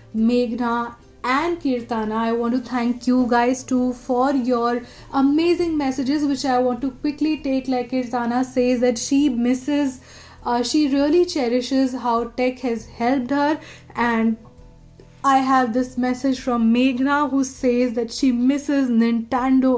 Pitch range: 235-265 Hz